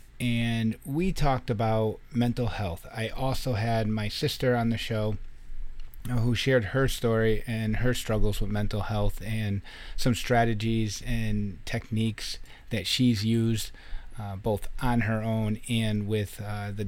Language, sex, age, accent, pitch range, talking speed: English, male, 30-49, American, 105-125 Hz, 145 wpm